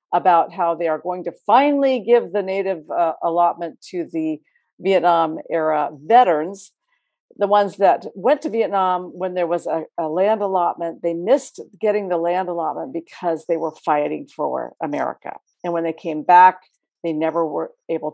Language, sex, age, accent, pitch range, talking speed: English, female, 50-69, American, 165-215 Hz, 165 wpm